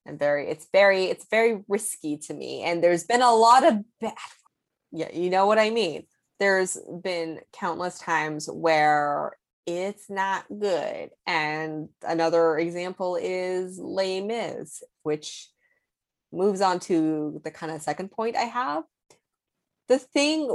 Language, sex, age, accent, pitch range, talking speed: English, female, 20-39, American, 155-210 Hz, 145 wpm